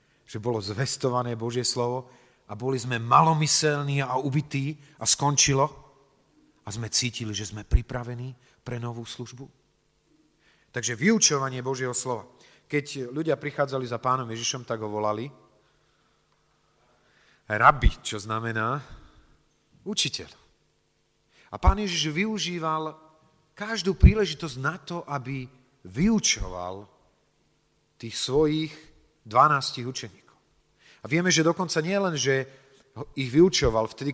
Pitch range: 120-150 Hz